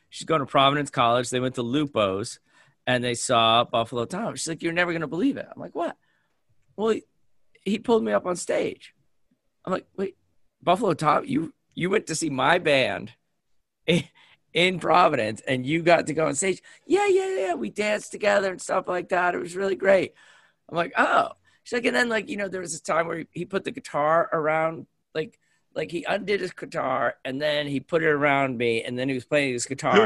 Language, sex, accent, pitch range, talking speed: English, male, American, 130-200 Hz, 220 wpm